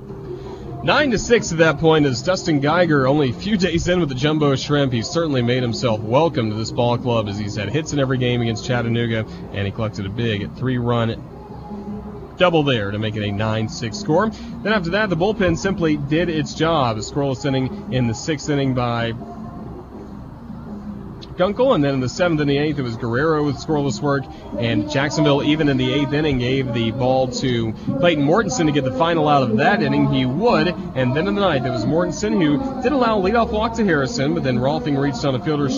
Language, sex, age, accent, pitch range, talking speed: English, male, 30-49, American, 130-180 Hz, 215 wpm